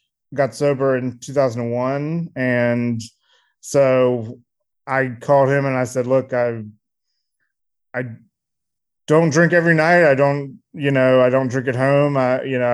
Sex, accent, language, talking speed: male, American, English, 145 wpm